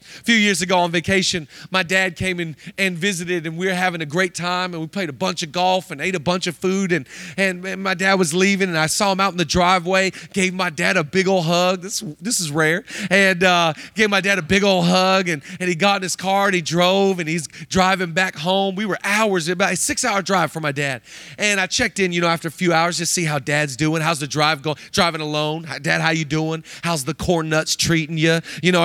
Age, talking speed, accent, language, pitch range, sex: 30-49, 260 wpm, American, English, 165-210 Hz, male